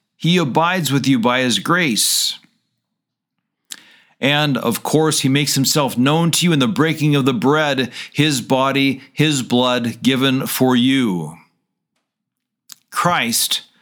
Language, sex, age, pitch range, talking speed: English, male, 50-69, 135-170 Hz, 130 wpm